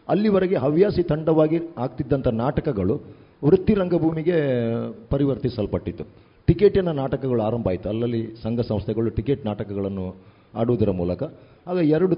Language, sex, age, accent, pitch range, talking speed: Kannada, male, 40-59, native, 115-155 Hz, 100 wpm